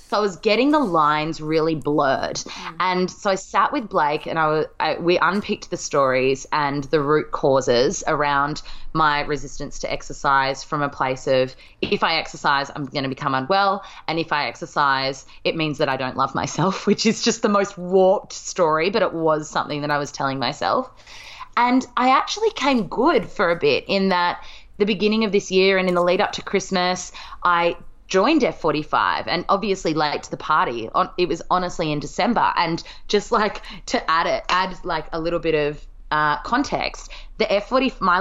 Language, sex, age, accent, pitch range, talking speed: English, female, 20-39, Australian, 150-210 Hz, 190 wpm